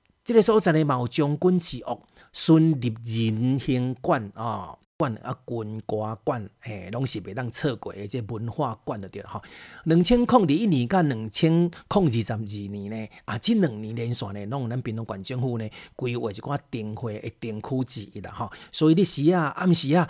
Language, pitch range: Chinese, 110-150 Hz